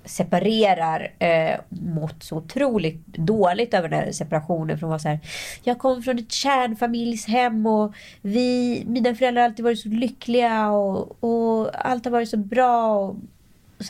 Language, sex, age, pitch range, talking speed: Swedish, female, 30-49, 160-215 Hz, 150 wpm